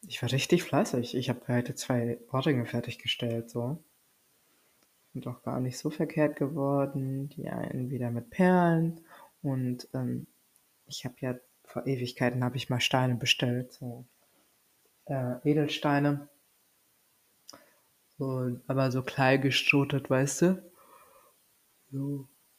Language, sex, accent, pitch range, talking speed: German, female, German, 125-150 Hz, 120 wpm